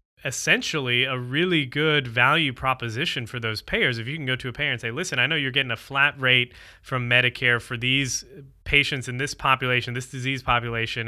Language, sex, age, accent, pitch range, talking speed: English, male, 20-39, American, 120-145 Hz, 200 wpm